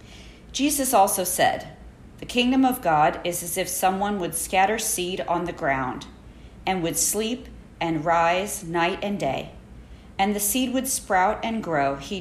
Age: 50-69